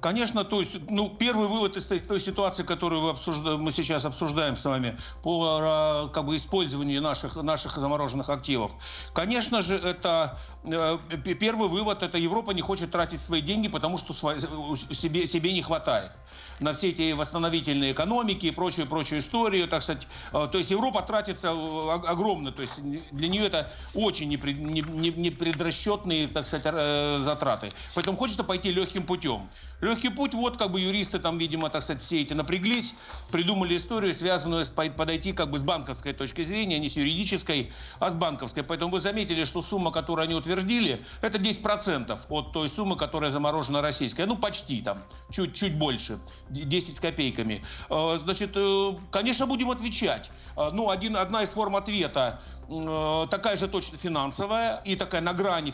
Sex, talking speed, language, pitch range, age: male, 140 wpm, Russian, 150-195 Hz, 60-79